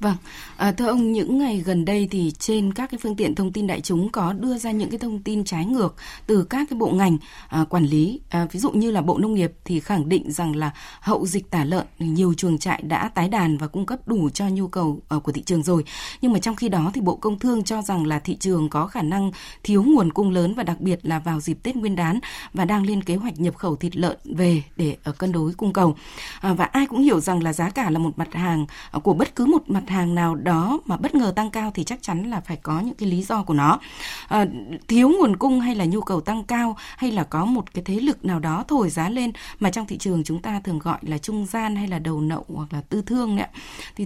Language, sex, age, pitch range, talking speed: Vietnamese, female, 20-39, 170-220 Hz, 270 wpm